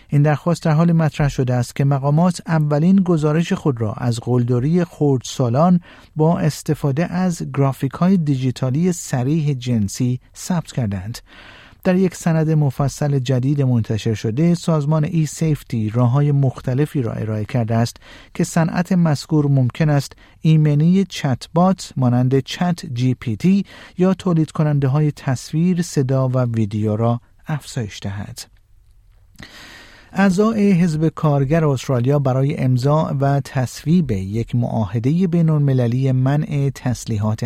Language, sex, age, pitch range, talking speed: Persian, male, 50-69, 120-160 Hz, 130 wpm